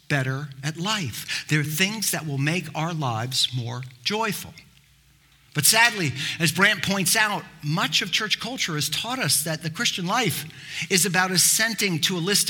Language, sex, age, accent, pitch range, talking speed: English, male, 50-69, American, 135-185 Hz, 175 wpm